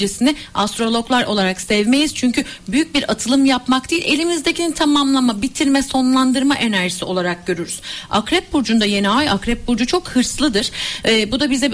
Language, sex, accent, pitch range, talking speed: Turkish, female, native, 220-280 Hz, 145 wpm